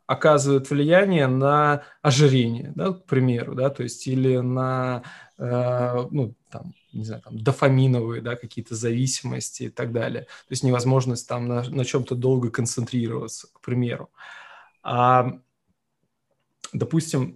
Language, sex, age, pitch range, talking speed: Russian, male, 20-39, 125-140 Hz, 130 wpm